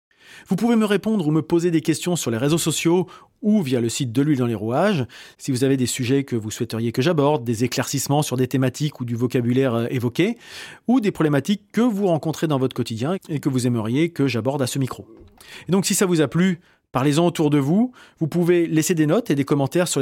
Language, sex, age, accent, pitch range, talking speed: French, male, 30-49, French, 130-170 Hz, 235 wpm